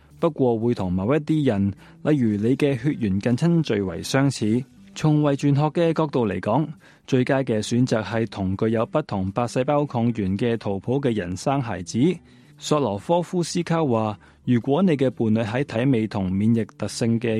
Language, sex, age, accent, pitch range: Chinese, male, 20-39, native, 105-145 Hz